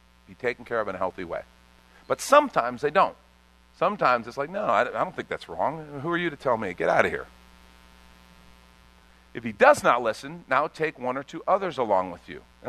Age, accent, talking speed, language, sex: 50-69, American, 215 wpm, English, male